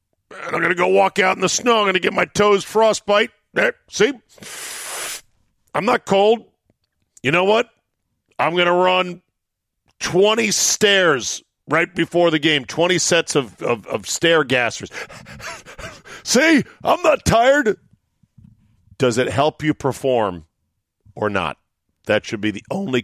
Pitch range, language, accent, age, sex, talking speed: 110-175 Hz, English, American, 50-69, male, 150 wpm